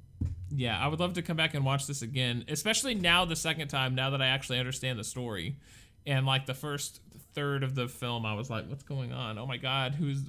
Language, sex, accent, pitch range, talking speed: English, male, American, 105-155 Hz, 240 wpm